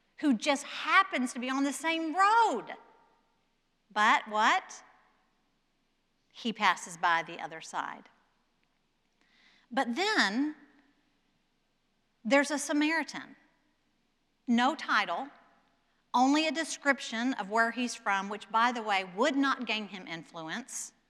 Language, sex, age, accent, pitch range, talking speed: English, female, 50-69, American, 220-285 Hz, 115 wpm